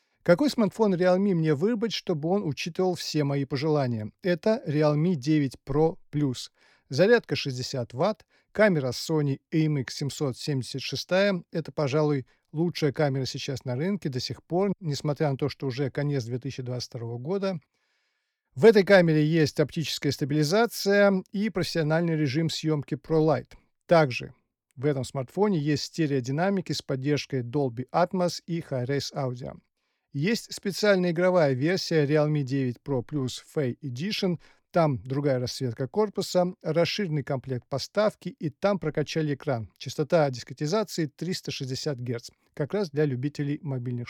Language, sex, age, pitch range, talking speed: Russian, male, 40-59, 140-175 Hz, 130 wpm